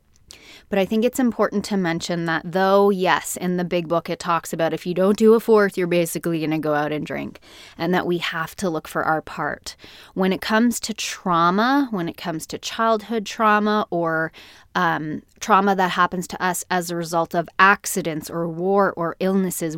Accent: American